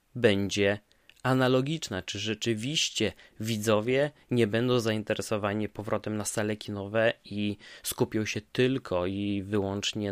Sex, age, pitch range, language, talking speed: male, 20-39, 100-115 Hz, Polish, 105 wpm